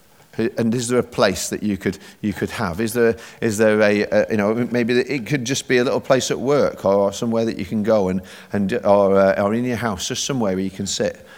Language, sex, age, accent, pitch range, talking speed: English, male, 40-59, British, 100-135 Hz, 260 wpm